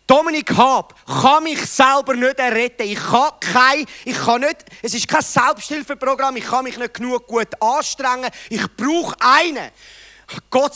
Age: 40-59